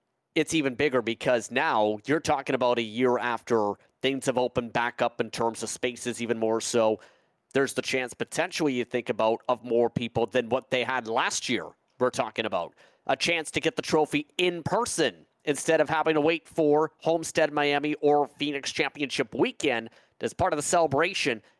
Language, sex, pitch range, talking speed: English, male, 125-165 Hz, 185 wpm